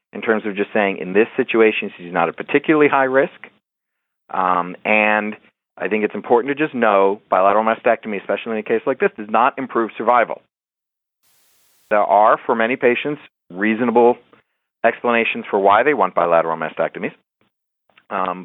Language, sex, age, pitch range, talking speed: English, male, 40-59, 105-130 Hz, 160 wpm